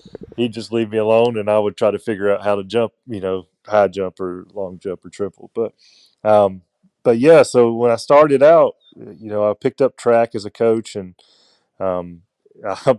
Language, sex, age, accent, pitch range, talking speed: English, male, 30-49, American, 90-115 Hz, 210 wpm